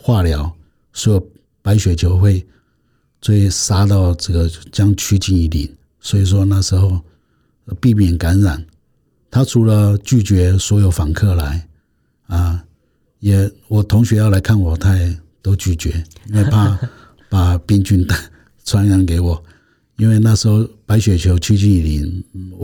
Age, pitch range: 60-79, 85-110 Hz